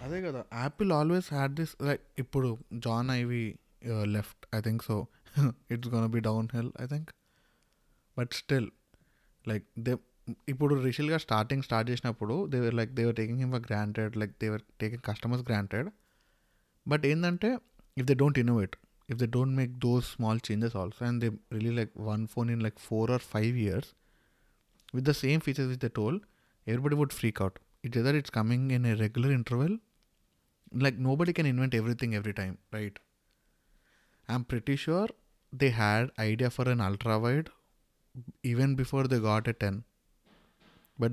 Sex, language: male, Telugu